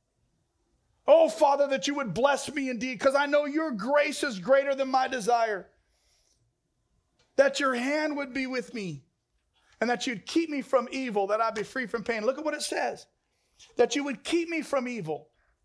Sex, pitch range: male, 250-300 Hz